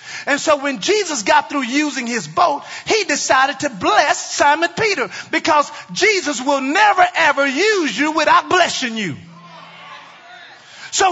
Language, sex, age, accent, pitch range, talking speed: English, male, 40-59, American, 200-315 Hz, 140 wpm